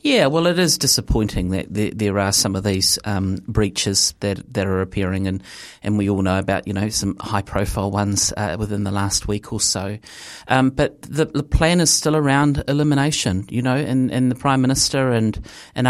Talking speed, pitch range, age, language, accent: 205 wpm, 100-125 Hz, 30-49, English, Australian